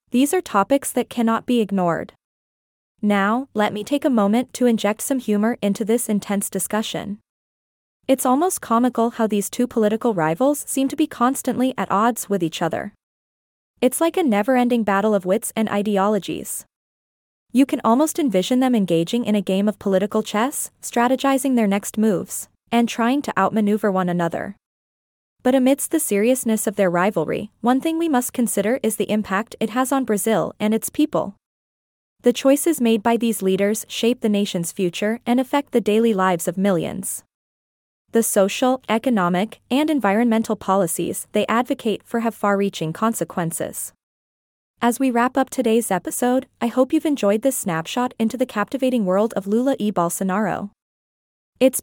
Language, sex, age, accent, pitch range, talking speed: English, female, 20-39, American, 200-255 Hz, 165 wpm